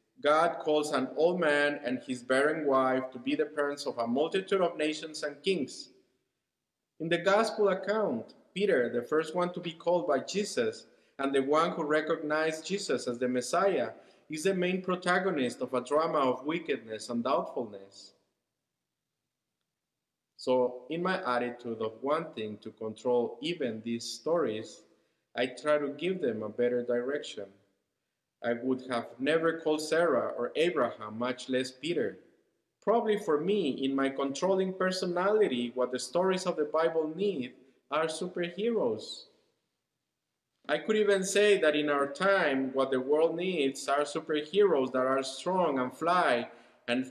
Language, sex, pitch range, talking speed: English, male, 125-175 Hz, 150 wpm